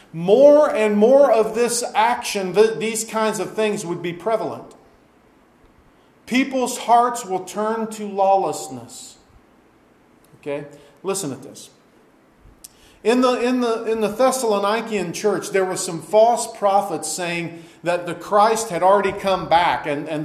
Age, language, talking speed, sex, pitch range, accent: 40-59, English, 140 wpm, male, 165-225 Hz, American